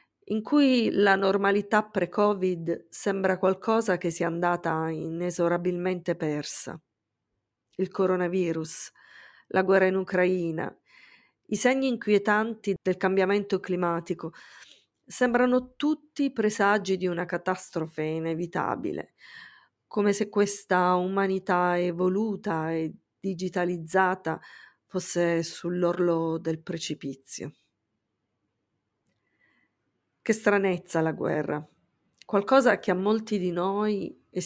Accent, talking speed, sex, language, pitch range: native, 90 wpm, female, Italian, 170-200 Hz